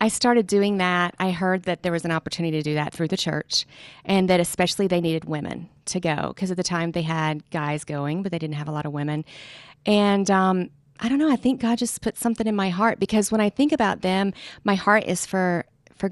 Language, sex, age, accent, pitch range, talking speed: English, female, 40-59, American, 165-195 Hz, 245 wpm